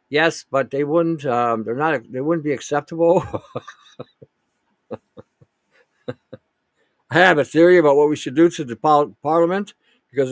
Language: English